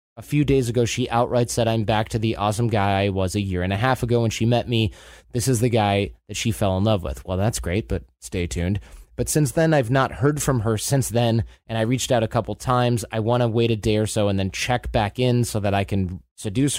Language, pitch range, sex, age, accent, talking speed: English, 100-125 Hz, male, 20-39, American, 270 wpm